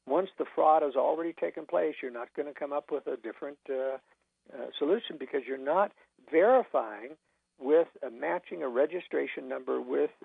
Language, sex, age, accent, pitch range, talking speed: English, male, 60-79, American, 145-210 Hz, 175 wpm